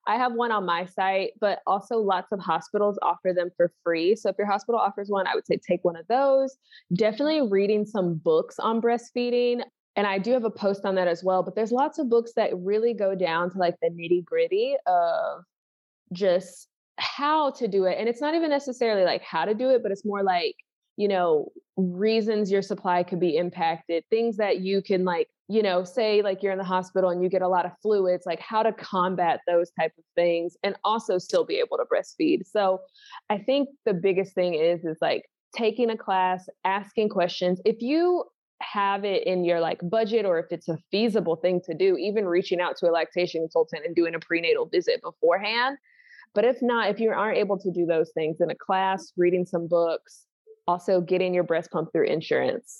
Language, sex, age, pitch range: English, female, 20-39, 180-240 Hz